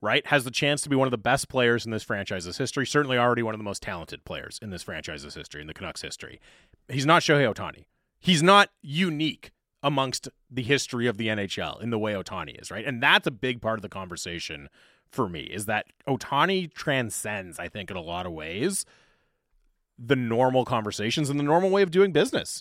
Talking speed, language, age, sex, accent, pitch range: 215 wpm, English, 30-49, male, American, 105-145 Hz